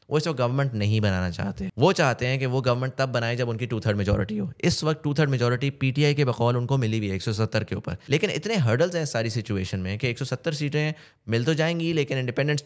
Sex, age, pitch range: male, 20-39, 110-140 Hz